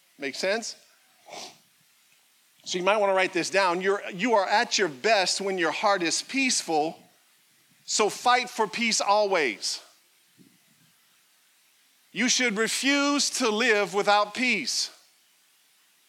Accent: American